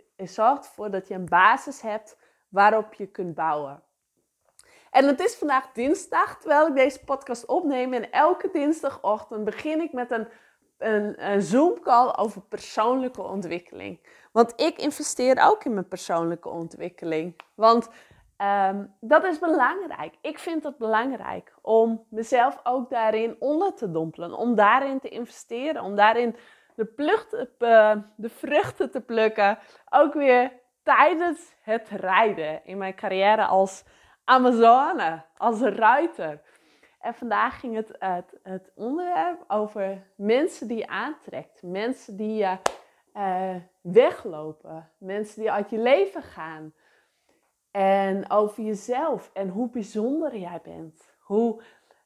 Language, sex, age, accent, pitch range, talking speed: English, female, 20-39, Dutch, 195-260 Hz, 130 wpm